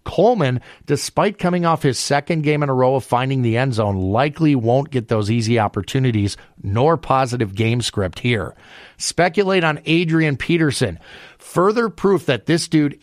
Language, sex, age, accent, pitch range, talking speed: English, male, 40-59, American, 115-145 Hz, 160 wpm